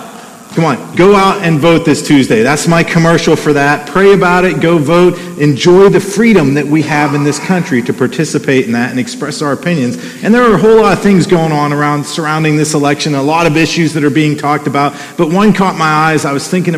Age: 40-59